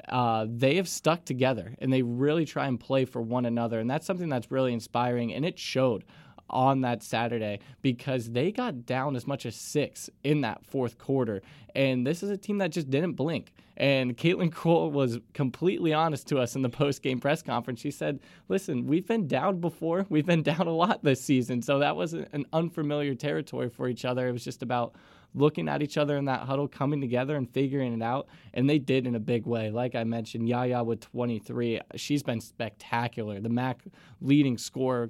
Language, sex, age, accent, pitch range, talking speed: English, male, 20-39, American, 120-145 Hz, 205 wpm